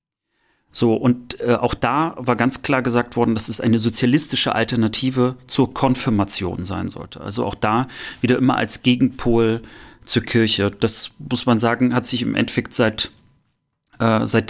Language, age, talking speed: German, 30-49, 160 wpm